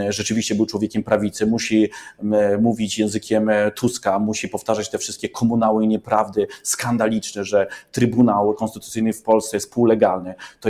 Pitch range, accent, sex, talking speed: 110-120 Hz, native, male, 135 wpm